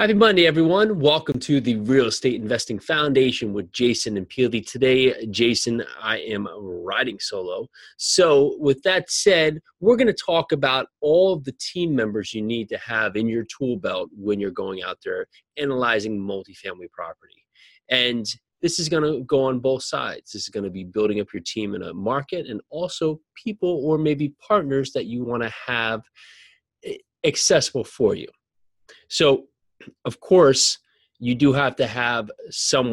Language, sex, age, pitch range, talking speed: English, male, 20-39, 105-150 Hz, 170 wpm